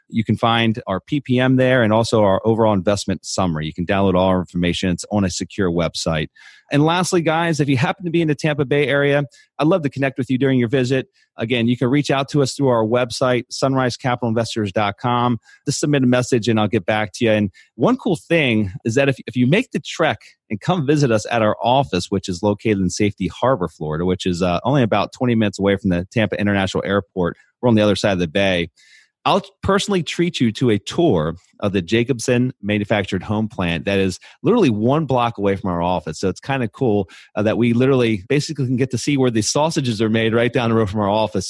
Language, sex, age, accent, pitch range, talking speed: English, male, 30-49, American, 100-135 Hz, 230 wpm